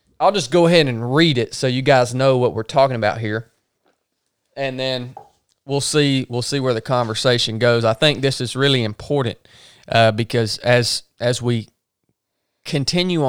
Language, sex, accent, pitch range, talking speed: English, male, American, 115-135 Hz, 170 wpm